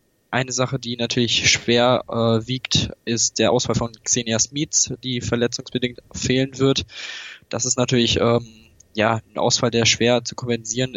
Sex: male